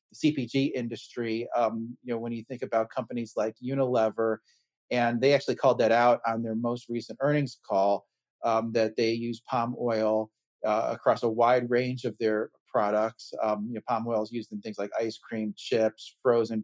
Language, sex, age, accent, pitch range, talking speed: English, male, 30-49, American, 110-125 Hz, 190 wpm